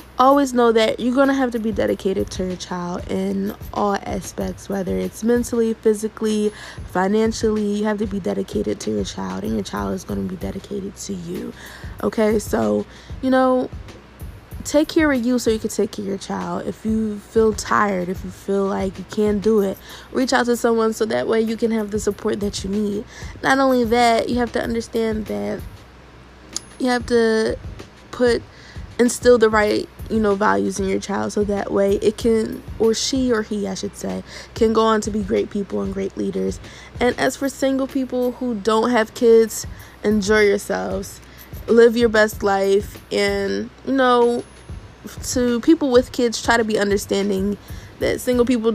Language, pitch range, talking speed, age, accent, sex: English, 195-235 Hz, 190 wpm, 20-39, American, female